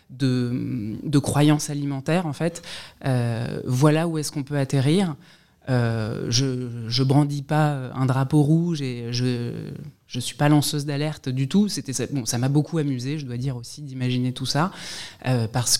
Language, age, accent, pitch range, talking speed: French, 20-39, French, 130-155 Hz, 170 wpm